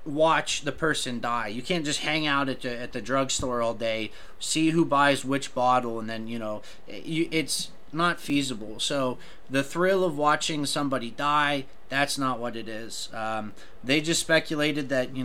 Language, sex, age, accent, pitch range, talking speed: English, male, 30-49, American, 120-150 Hz, 175 wpm